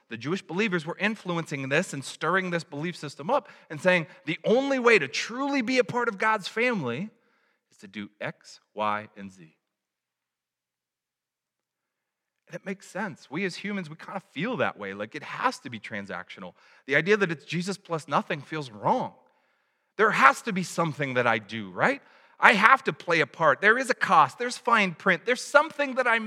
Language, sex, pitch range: English, male, 165-240 Hz